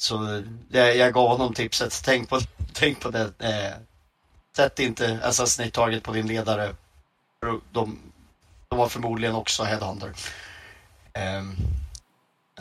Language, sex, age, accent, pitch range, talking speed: Swedish, male, 30-49, native, 100-120 Hz, 125 wpm